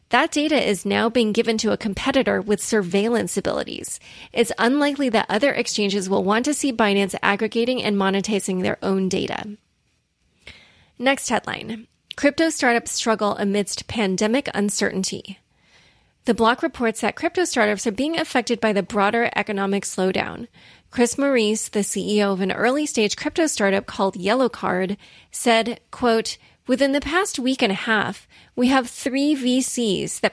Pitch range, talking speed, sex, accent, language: 200-245 Hz, 150 wpm, female, American, English